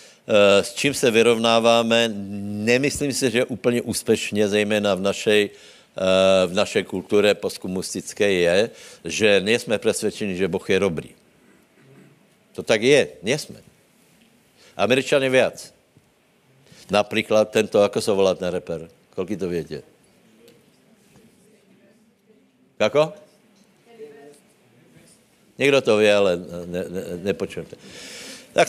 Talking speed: 100 wpm